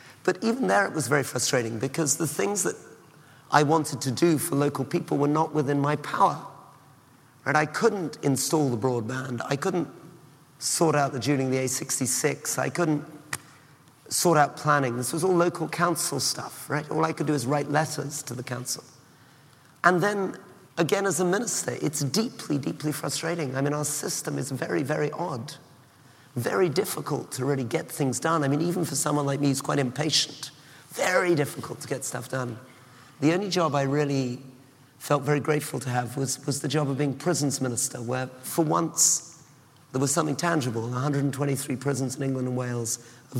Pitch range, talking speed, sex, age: 130-155 Hz, 185 wpm, male, 40-59